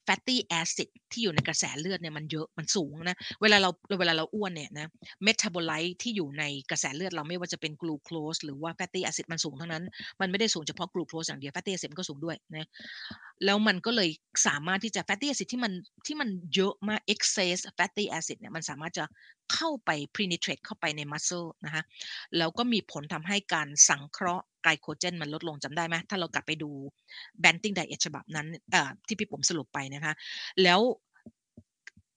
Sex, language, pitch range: female, Thai, 155-195 Hz